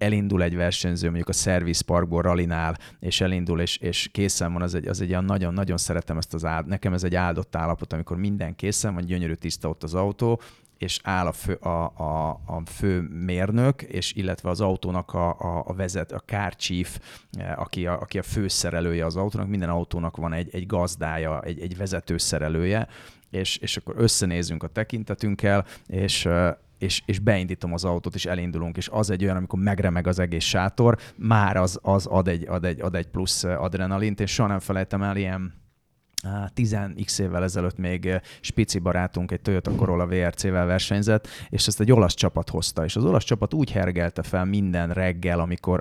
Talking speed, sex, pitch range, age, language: 185 wpm, male, 85-100 Hz, 30-49, Hungarian